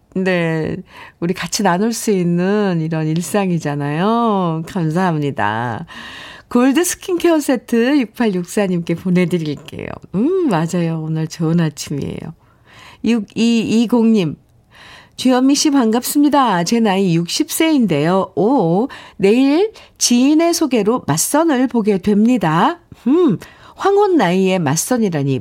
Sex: female